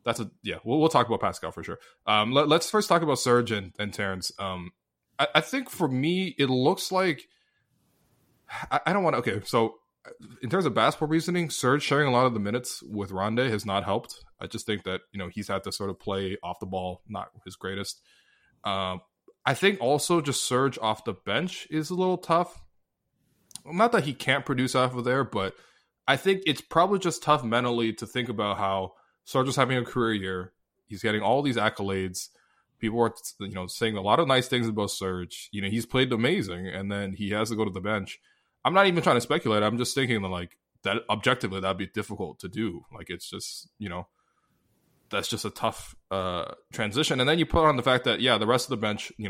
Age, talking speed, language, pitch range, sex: 20-39, 225 wpm, English, 100-135 Hz, male